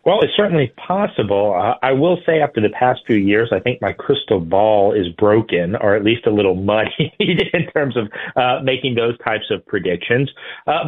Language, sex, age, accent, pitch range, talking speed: English, male, 40-59, American, 95-115 Hz, 200 wpm